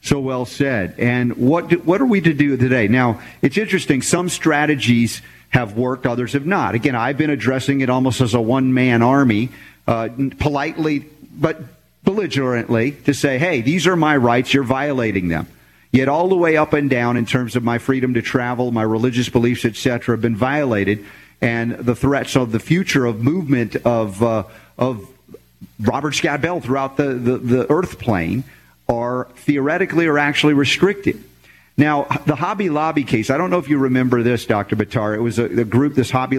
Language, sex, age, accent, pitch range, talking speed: English, male, 50-69, American, 120-145 Hz, 185 wpm